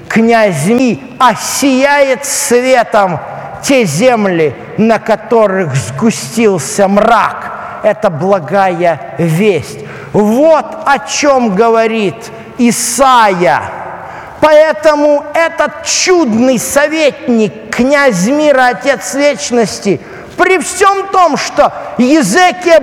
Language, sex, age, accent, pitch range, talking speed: Russian, male, 50-69, native, 175-280 Hz, 80 wpm